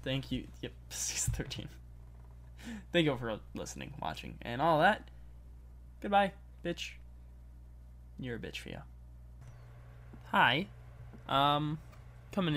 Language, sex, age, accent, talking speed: English, male, 10-29, American, 110 wpm